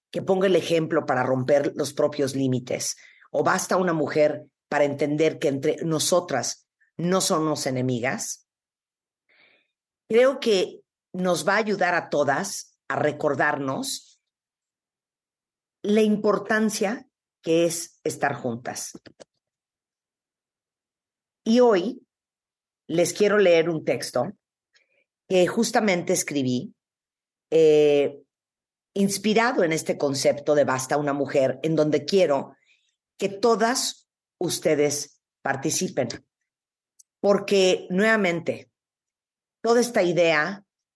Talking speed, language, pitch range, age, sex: 100 wpm, Spanish, 145-190 Hz, 40-59, female